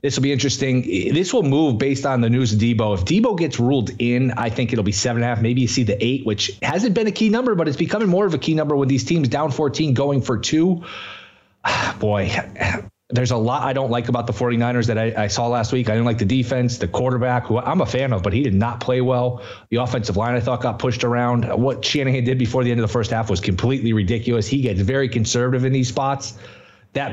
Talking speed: 255 wpm